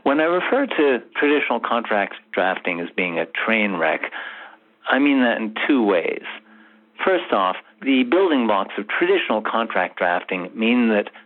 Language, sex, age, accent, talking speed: English, male, 60-79, American, 155 wpm